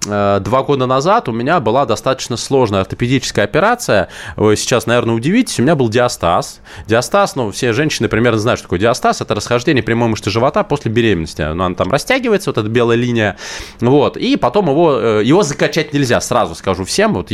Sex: male